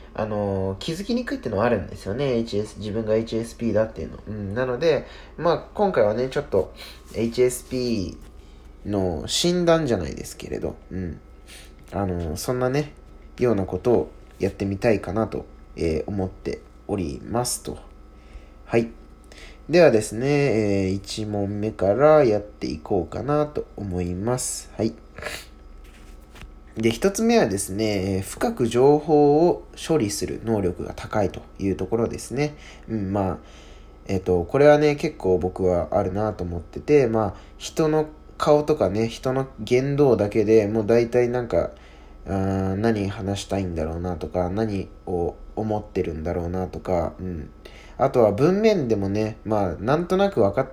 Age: 20-39